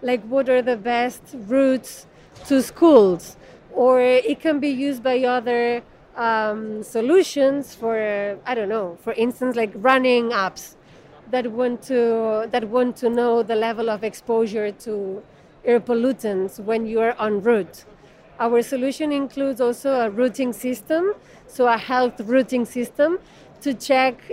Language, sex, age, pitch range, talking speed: English, female, 30-49, 220-260 Hz, 145 wpm